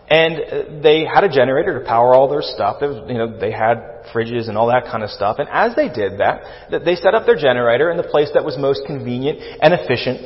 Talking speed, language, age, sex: 220 wpm, English, 30-49, male